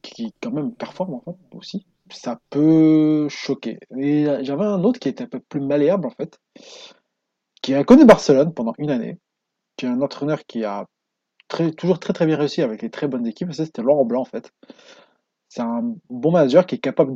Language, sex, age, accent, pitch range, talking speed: French, male, 20-39, French, 125-175 Hz, 195 wpm